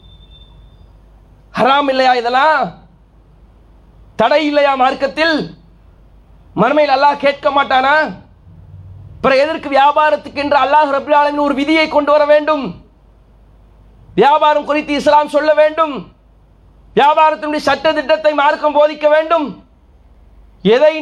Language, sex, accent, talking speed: English, male, Indian, 85 wpm